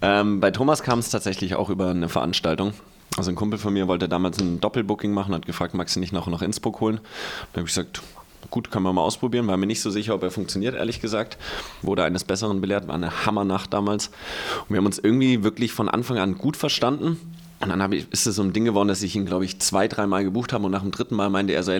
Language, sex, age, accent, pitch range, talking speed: German, male, 20-39, German, 90-110 Hz, 250 wpm